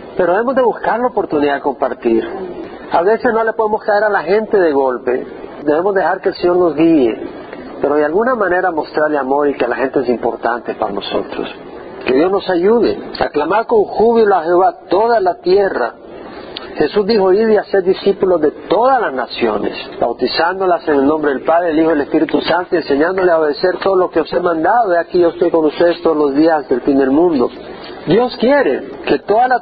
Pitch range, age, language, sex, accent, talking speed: 155-225 Hz, 50-69, Spanish, male, Mexican, 210 wpm